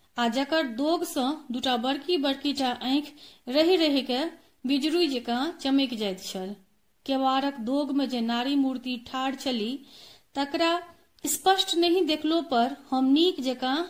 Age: 40-59